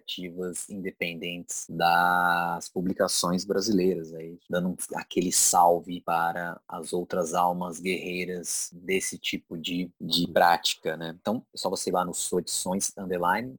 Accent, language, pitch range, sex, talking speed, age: Brazilian, Portuguese, 85-100 Hz, male, 130 wpm, 20-39